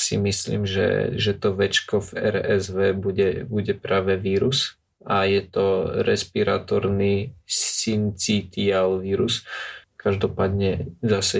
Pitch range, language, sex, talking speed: 95-115 Hz, Slovak, male, 105 wpm